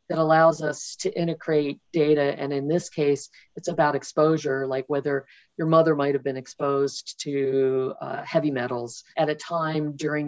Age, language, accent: 50-69, English, American